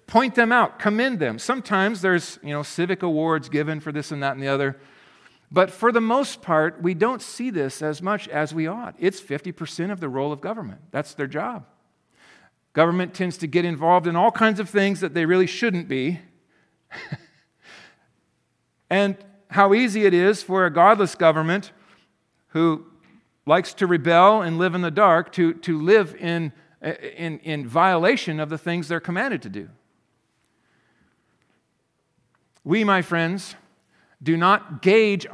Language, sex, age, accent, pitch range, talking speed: English, male, 50-69, American, 155-190 Hz, 165 wpm